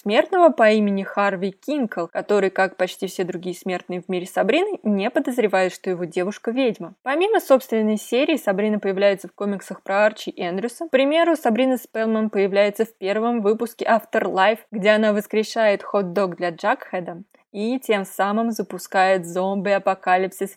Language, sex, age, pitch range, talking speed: Russian, female, 20-39, 200-245 Hz, 145 wpm